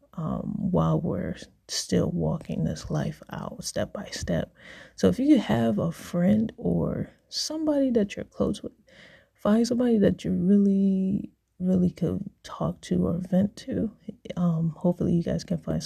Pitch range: 175-205 Hz